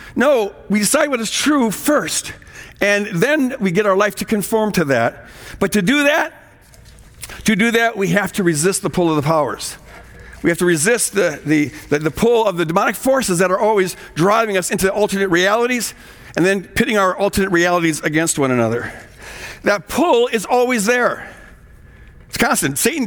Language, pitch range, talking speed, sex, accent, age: English, 165-220 Hz, 185 wpm, male, American, 60-79